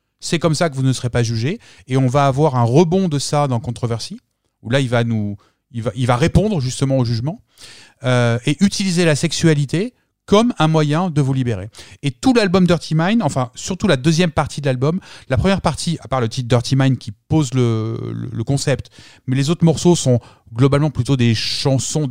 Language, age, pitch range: French, 30-49, 115-145 Hz